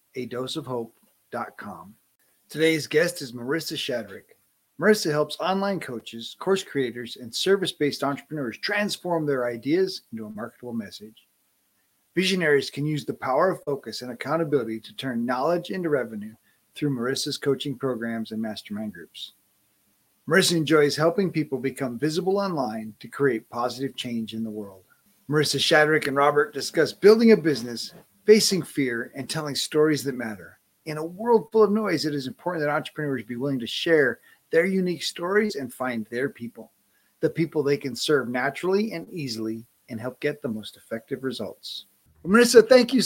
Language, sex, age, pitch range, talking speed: English, male, 40-59, 130-185 Hz, 160 wpm